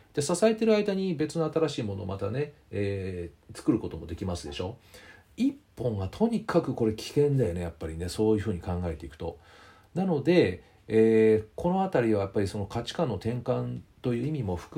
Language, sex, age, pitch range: Japanese, male, 40-59, 90-145 Hz